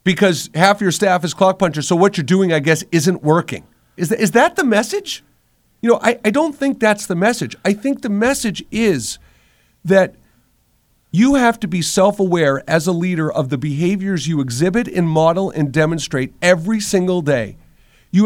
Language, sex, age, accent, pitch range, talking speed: English, male, 50-69, American, 160-215 Hz, 185 wpm